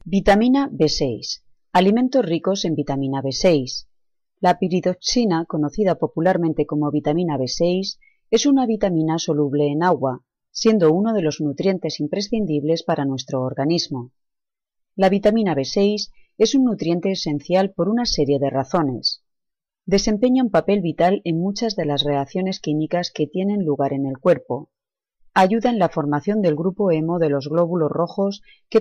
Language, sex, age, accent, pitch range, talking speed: Spanish, female, 30-49, Spanish, 150-200 Hz, 145 wpm